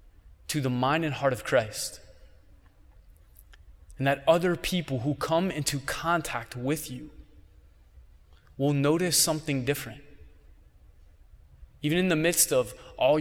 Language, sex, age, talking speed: English, male, 20-39, 125 wpm